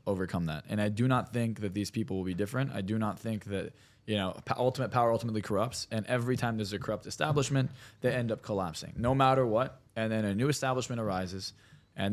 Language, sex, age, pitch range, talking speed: English, male, 20-39, 110-135 Hz, 230 wpm